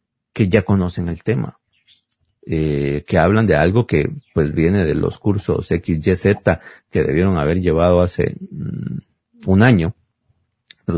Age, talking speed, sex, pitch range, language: 40-59, 135 wpm, male, 85-130 Hz, Spanish